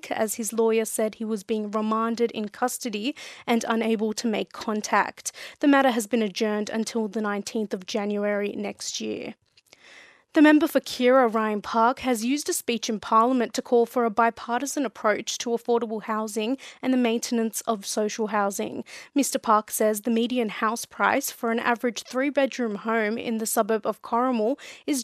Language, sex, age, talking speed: English, female, 20-39, 175 wpm